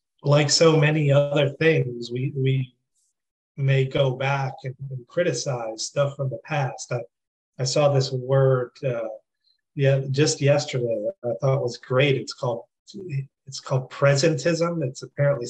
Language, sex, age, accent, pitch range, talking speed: English, male, 30-49, American, 125-140 Hz, 145 wpm